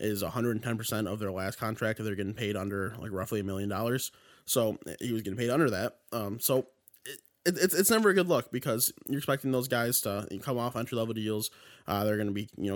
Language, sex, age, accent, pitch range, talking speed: English, male, 20-39, American, 105-125 Hz, 230 wpm